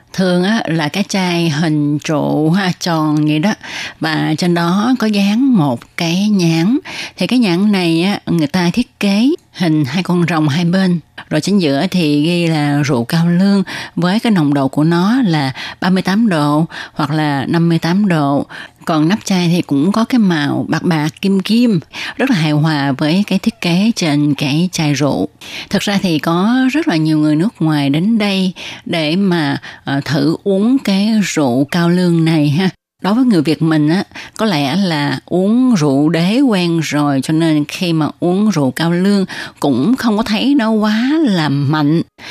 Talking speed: 185 wpm